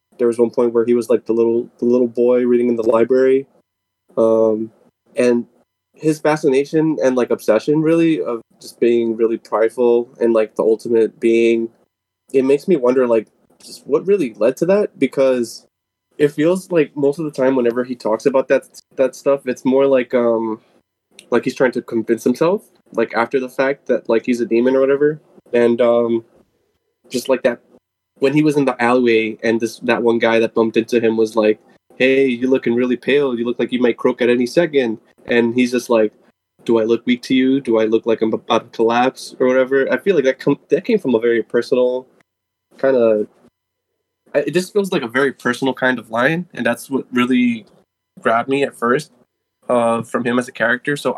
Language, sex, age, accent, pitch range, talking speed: English, male, 20-39, American, 115-135 Hz, 205 wpm